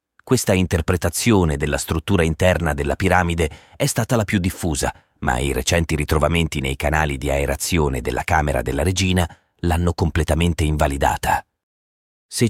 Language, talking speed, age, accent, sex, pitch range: Italian, 135 wpm, 40-59, native, male, 80-100 Hz